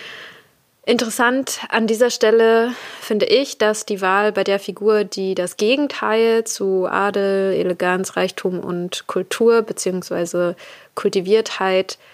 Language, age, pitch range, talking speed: German, 20-39, 185-215 Hz, 115 wpm